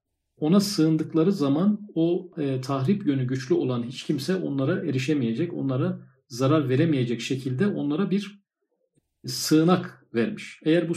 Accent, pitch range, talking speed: native, 130-180 Hz, 125 wpm